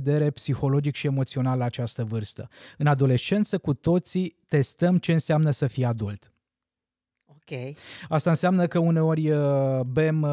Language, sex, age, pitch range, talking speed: Romanian, male, 20-39, 130-165 Hz, 120 wpm